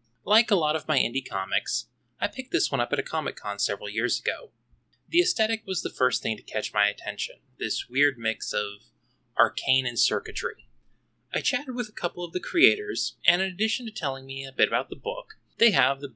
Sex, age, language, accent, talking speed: male, 20-39, English, American, 215 wpm